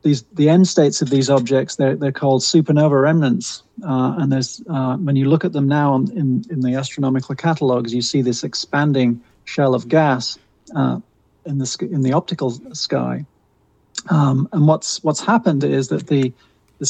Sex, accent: male, British